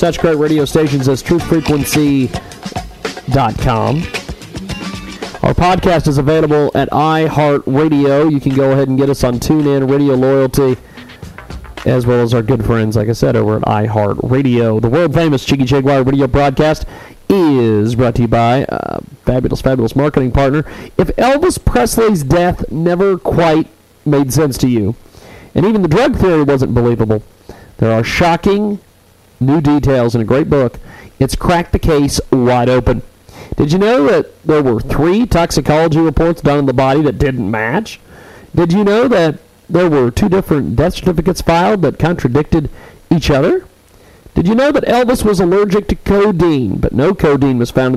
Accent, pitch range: American, 125-165 Hz